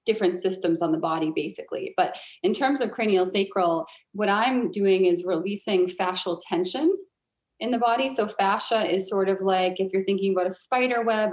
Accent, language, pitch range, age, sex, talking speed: American, English, 180-205 Hz, 30-49, female, 185 wpm